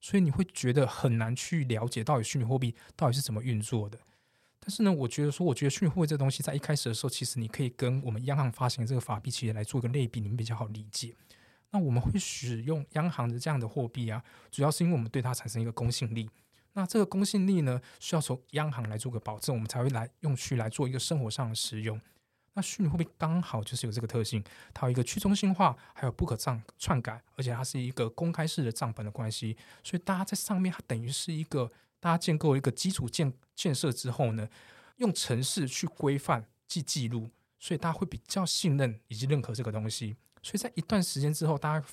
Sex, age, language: male, 20-39, Chinese